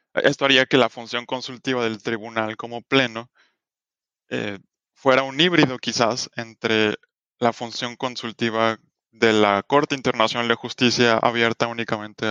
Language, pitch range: Spanish, 115-130 Hz